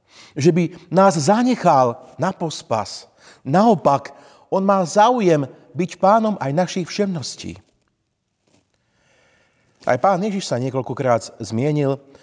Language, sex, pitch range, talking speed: Slovak, male, 120-175 Hz, 105 wpm